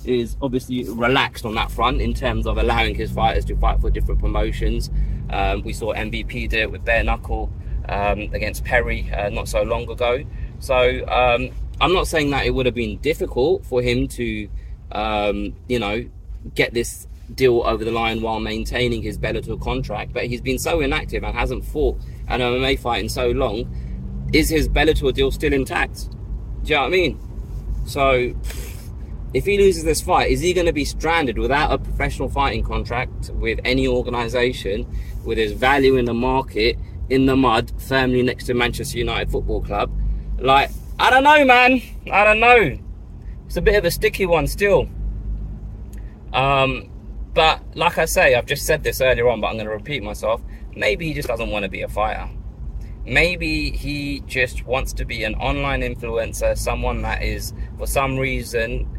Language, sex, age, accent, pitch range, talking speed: English, male, 20-39, British, 105-130 Hz, 185 wpm